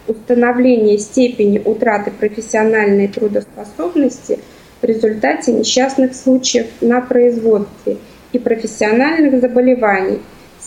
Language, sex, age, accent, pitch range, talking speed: Russian, female, 20-39, native, 220-255 Hz, 85 wpm